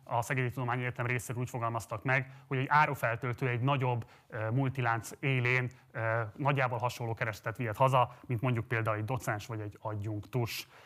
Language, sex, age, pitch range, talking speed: Hungarian, male, 30-49, 120-140 Hz, 165 wpm